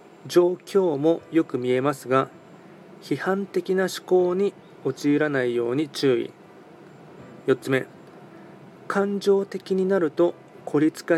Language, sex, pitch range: Japanese, male, 135-180 Hz